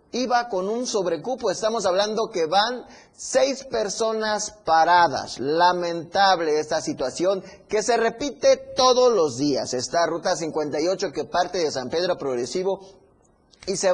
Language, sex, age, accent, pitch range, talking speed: Spanish, male, 30-49, Mexican, 160-220 Hz, 135 wpm